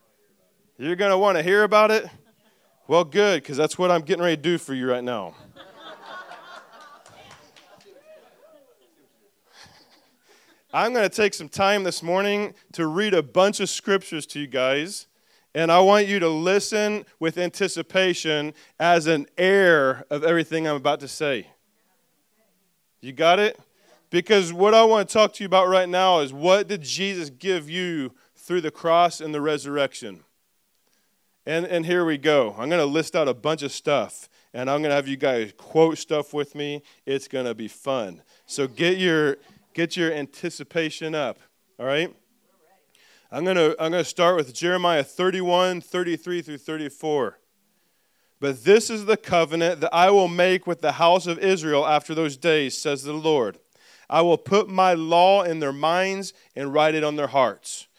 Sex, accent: male, American